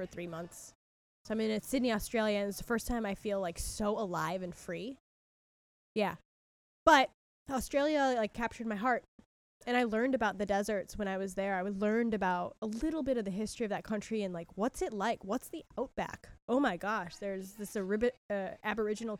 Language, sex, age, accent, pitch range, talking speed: English, female, 10-29, American, 185-230 Hz, 205 wpm